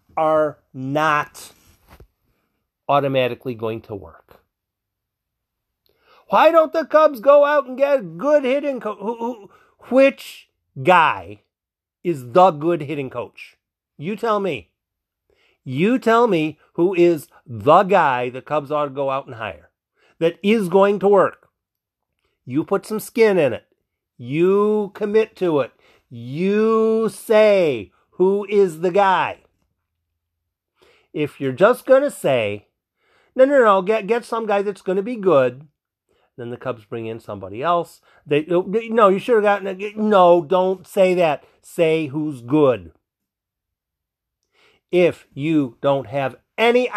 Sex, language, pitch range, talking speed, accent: male, English, 125-215 Hz, 140 wpm, American